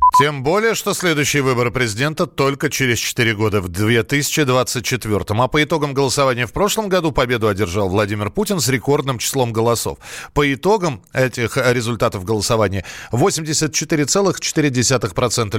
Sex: male